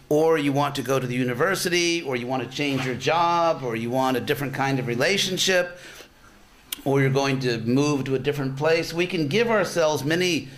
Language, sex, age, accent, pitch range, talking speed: English, male, 50-69, American, 135-165 Hz, 210 wpm